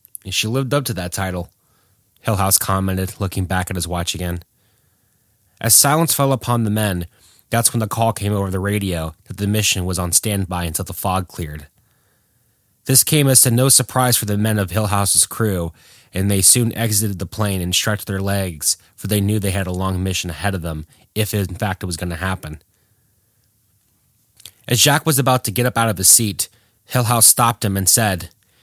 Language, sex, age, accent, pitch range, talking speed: English, male, 30-49, American, 95-125 Hz, 200 wpm